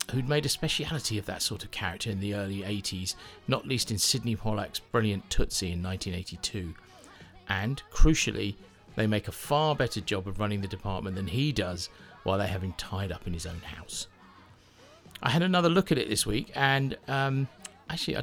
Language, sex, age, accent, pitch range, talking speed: English, male, 50-69, British, 95-130 Hz, 190 wpm